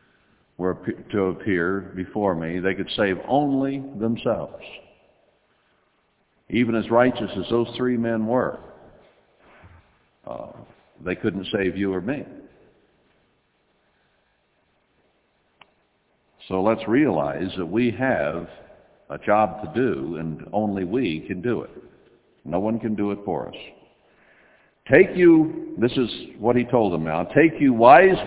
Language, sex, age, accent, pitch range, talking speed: English, male, 60-79, American, 95-135 Hz, 125 wpm